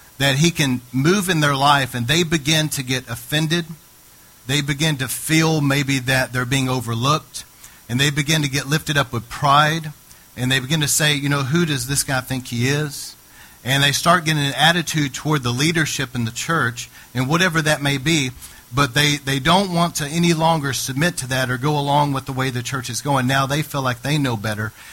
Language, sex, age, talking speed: English, male, 40-59, 215 wpm